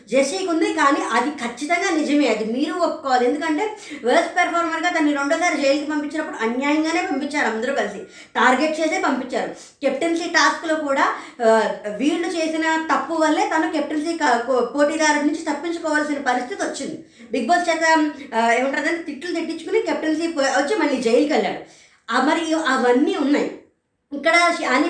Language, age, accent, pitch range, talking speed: Telugu, 20-39, native, 270-340 Hz, 130 wpm